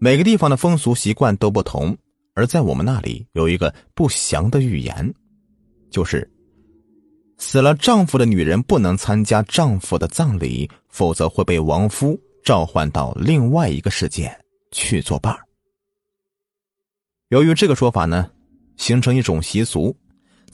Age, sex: 20-39, male